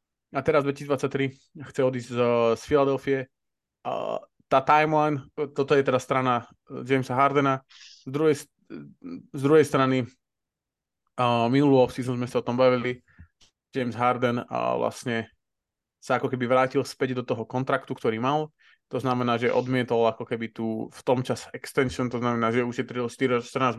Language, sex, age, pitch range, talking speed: Slovak, male, 20-39, 120-140 Hz, 145 wpm